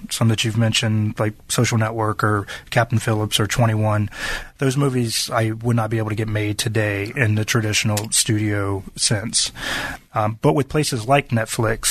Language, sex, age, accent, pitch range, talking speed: English, male, 30-49, American, 110-125 Hz, 170 wpm